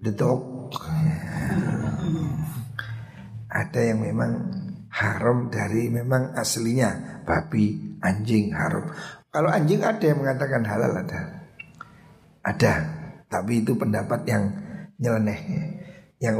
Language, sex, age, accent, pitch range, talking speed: Indonesian, male, 50-69, native, 115-160 Hz, 90 wpm